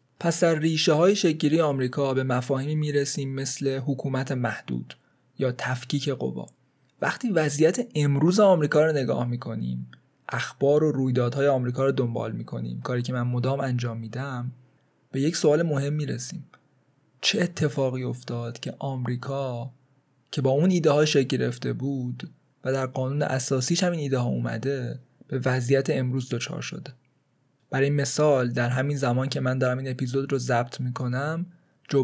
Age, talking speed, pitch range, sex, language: 20-39, 150 wpm, 125-150 Hz, male, Persian